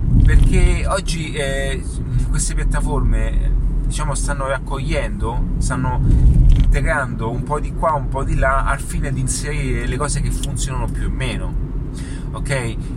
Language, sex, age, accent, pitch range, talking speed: Italian, male, 30-49, native, 130-145 Hz, 140 wpm